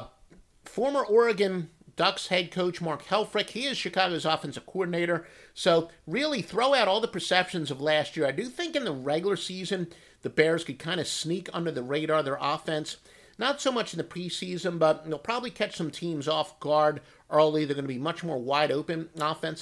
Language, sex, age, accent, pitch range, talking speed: English, male, 50-69, American, 145-180 Hz, 200 wpm